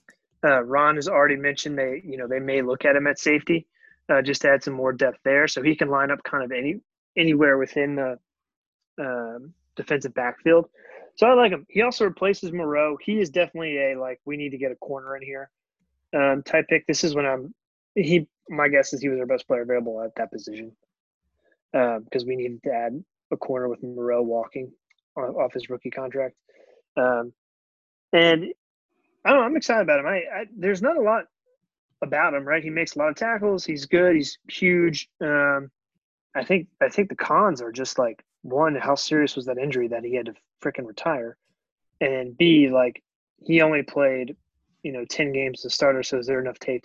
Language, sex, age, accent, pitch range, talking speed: English, male, 20-39, American, 130-170 Hz, 205 wpm